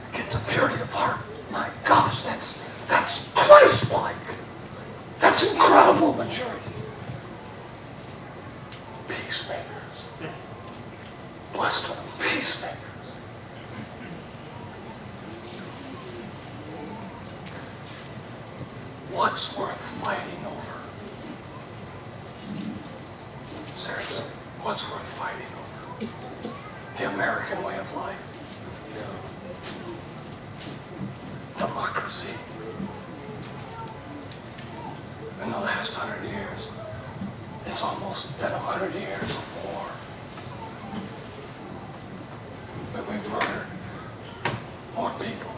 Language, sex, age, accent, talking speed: English, male, 60-79, American, 70 wpm